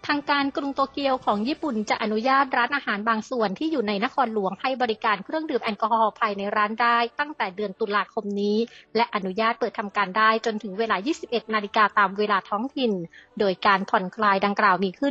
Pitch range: 205-250 Hz